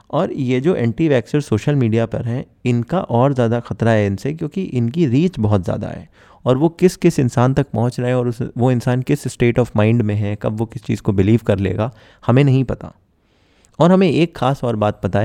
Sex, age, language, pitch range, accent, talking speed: male, 20-39, Hindi, 105-135 Hz, native, 225 wpm